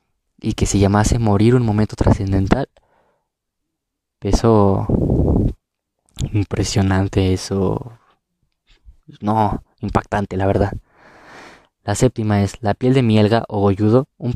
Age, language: 20-39, Spanish